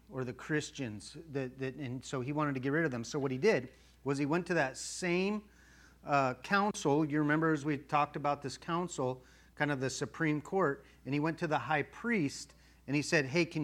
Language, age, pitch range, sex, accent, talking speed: English, 40-59, 130-160 Hz, male, American, 225 wpm